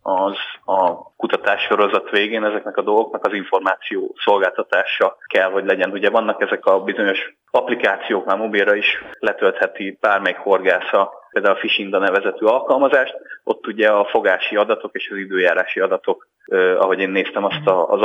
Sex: male